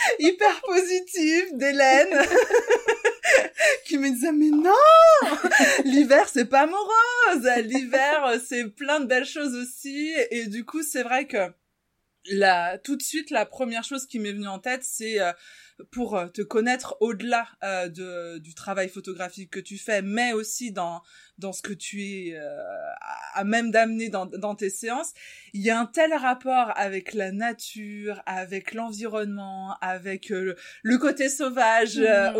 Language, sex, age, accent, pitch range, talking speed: French, female, 20-39, French, 200-280 Hz, 150 wpm